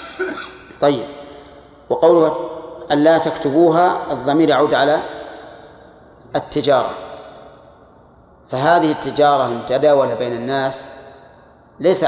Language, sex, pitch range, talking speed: Arabic, male, 135-155 Hz, 75 wpm